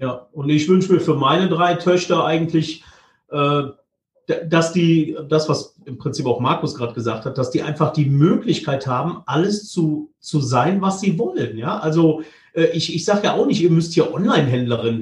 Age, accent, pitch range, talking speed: 40-59, German, 150-195 Hz, 195 wpm